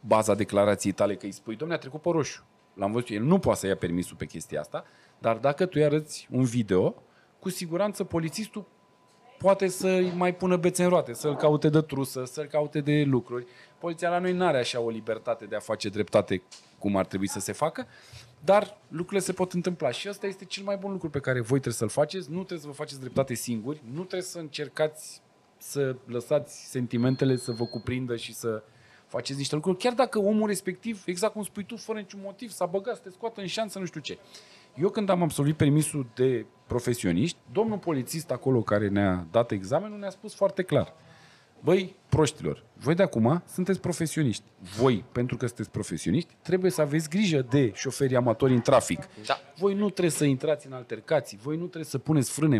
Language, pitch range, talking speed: Romanian, 120-185 Hz, 205 wpm